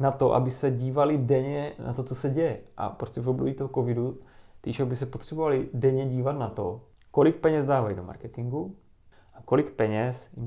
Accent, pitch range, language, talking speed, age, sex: native, 120-135 Hz, Czech, 195 wpm, 20-39, male